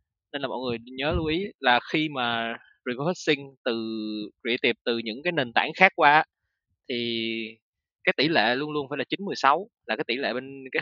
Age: 20-39